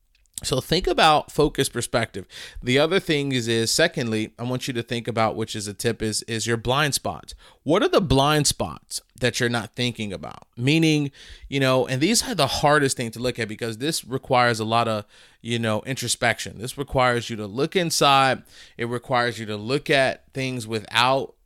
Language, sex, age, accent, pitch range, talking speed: English, male, 30-49, American, 115-140 Hz, 200 wpm